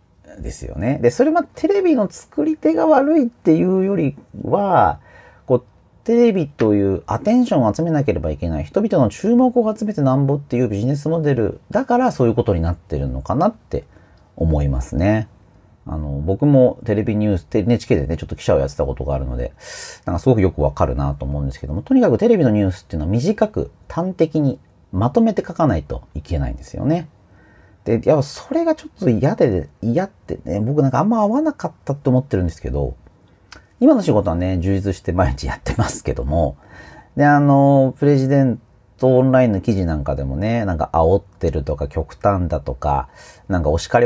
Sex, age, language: male, 40-59, Japanese